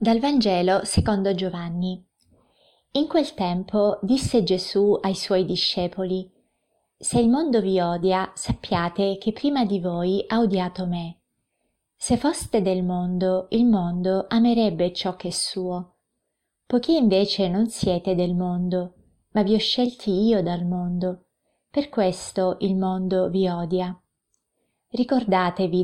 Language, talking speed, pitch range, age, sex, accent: Italian, 130 wpm, 180-215 Hz, 20-39, female, native